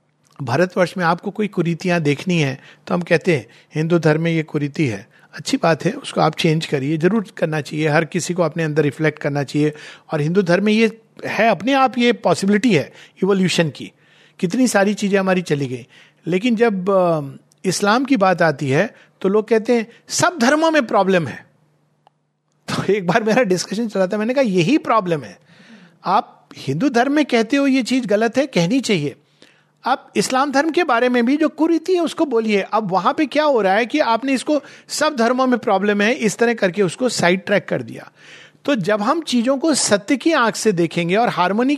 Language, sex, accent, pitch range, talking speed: Hindi, male, native, 165-240 Hz, 200 wpm